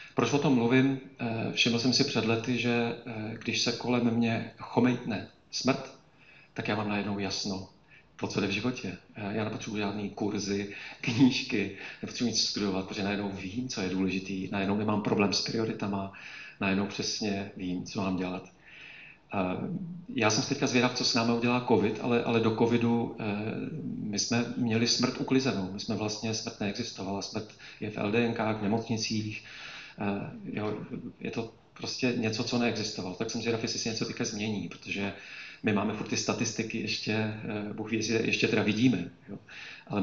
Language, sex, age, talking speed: Czech, male, 40-59, 165 wpm